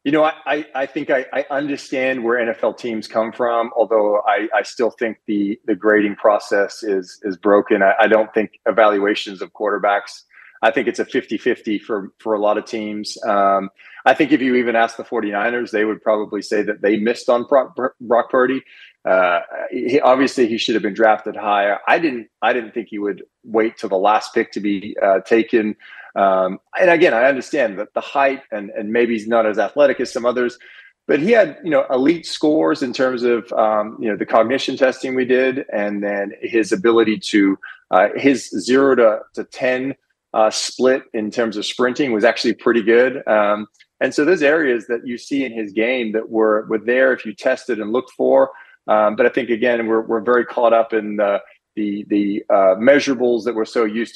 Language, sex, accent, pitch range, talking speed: English, male, American, 105-125 Hz, 205 wpm